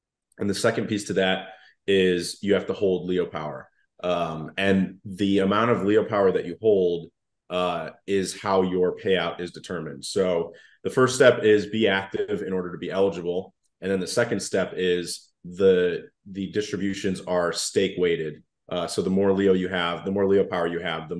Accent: American